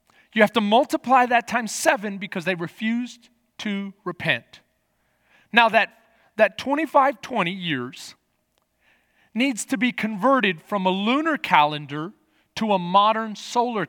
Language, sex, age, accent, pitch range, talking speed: English, male, 40-59, American, 175-245 Hz, 125 wpm